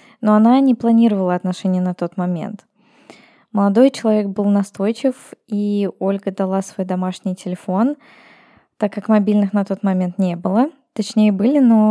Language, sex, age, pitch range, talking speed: Russian, female, 20-39, 190-220 Hz, 145 wpm